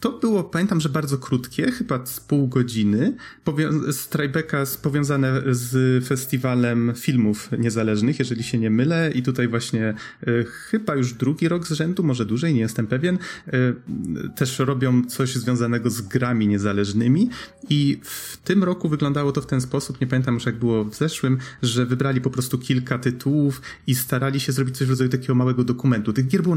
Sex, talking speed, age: male, 175 wpm, 30-49